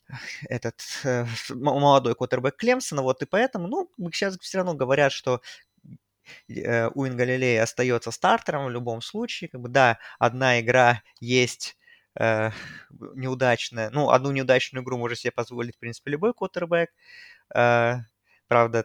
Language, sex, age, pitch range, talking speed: Russian, male, 20-39, 120-155 Hz, 135 wpm